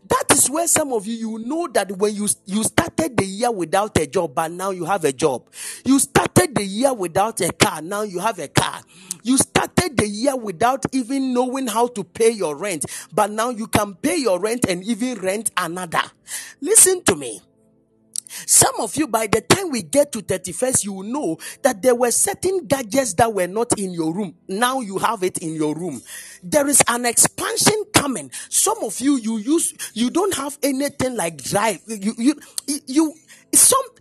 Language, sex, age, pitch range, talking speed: English, male, 40-59, 205-285 Hz, 200 wpm